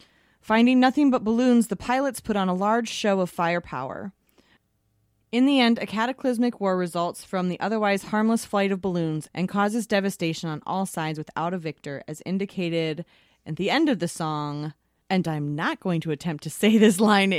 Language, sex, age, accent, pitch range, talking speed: English, female, 20-39, American, 155-210 Hz, 185 wpm